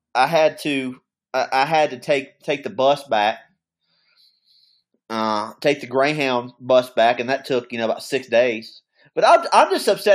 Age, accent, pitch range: 30-49, American, 125-155 Hz